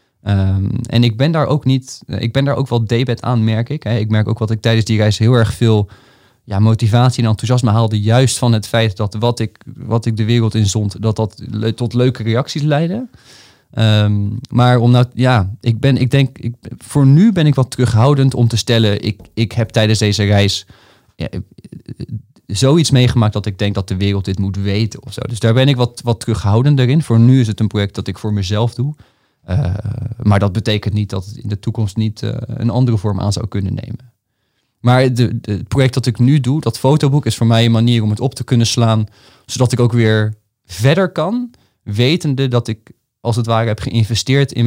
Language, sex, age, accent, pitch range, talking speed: Dutch, male, 20-39, Dutch, 110-130 Hz, 220 wpm